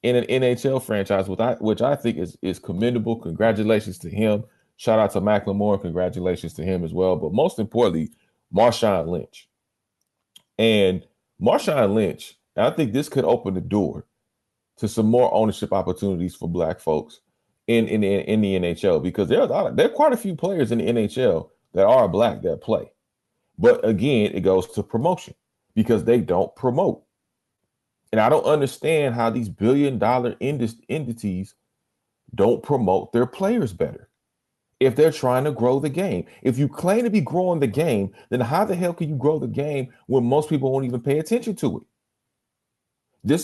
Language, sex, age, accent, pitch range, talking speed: English, male, 30-49, American, 105-150 Hz, 175 wpm